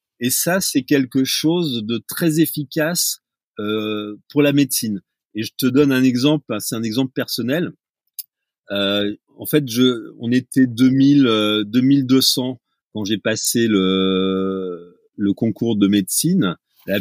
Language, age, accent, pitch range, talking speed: French, 30-49, French, 110-140 Hz, 140 wpm